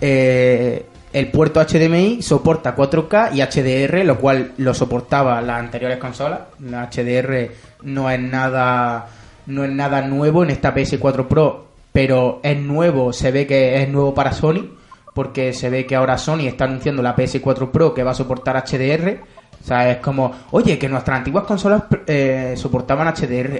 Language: Spanish